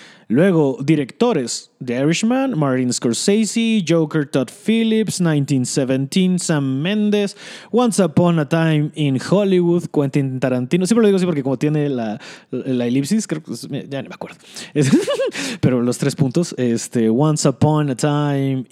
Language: Spanish